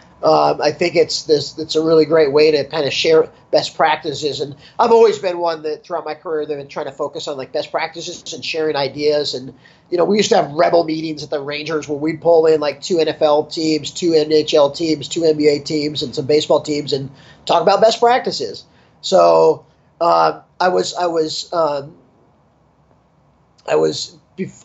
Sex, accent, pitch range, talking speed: male, American, 150-175 Hz, 200 wpm